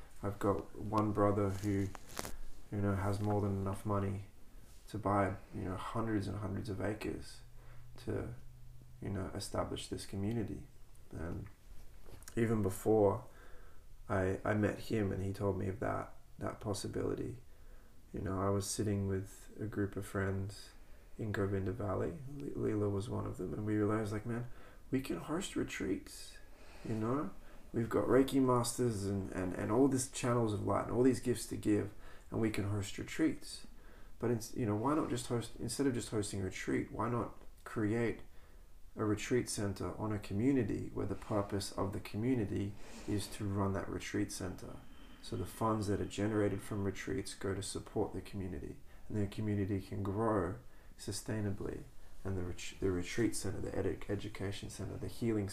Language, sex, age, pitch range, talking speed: Spanish, male, 20-39, 95-110 Hz, 175 wpm